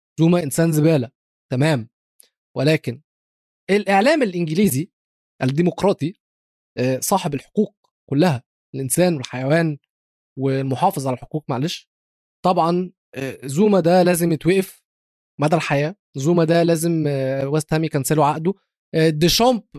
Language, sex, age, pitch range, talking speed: Arabic, male, 20-39, 140-185 Hz, 95 wpm